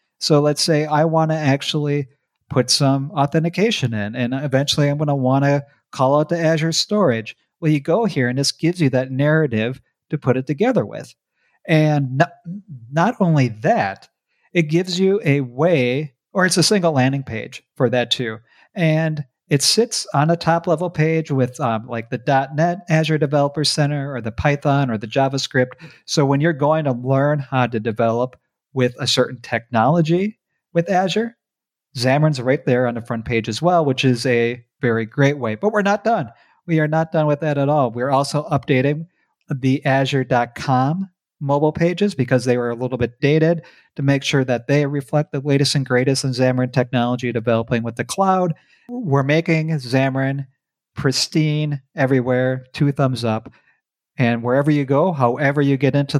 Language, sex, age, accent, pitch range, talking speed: English, male, 40-59, American, 130-160 Hz, 180 wpm